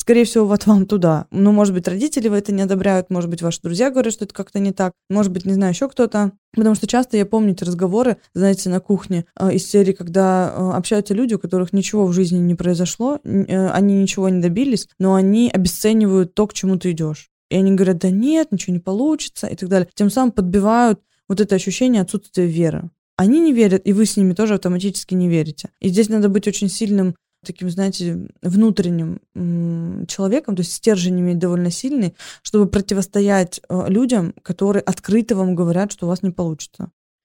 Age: 20-39